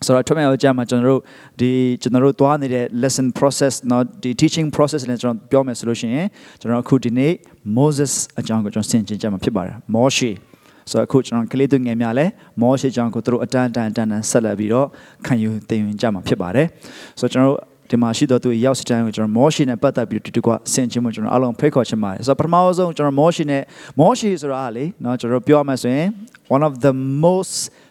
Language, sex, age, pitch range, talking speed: English, male, 30-49, 125-155 Hz, 60 wpm